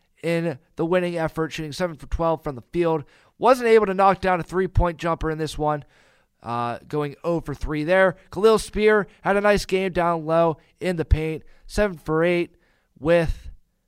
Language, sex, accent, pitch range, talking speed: English, male, American, 150-200 Hz, 180 wpm